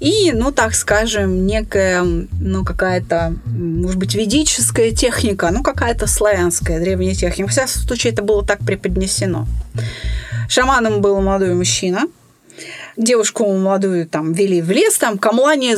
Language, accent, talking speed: Russian, native, 130 wpm